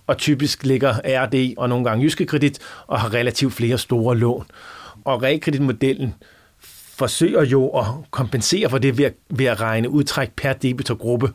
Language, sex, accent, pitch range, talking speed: Danish, male, native, 125-145 Hz, 155 wpm